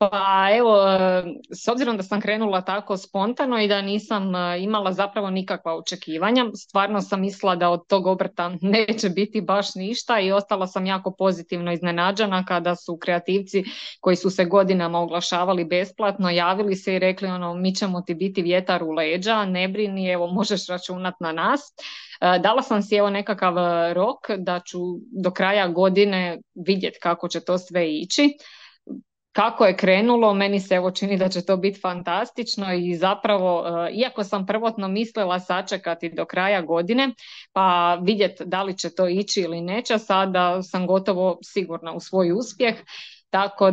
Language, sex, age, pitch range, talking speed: Croatian, female, 20-39, 180-205 Hz, 160 wpm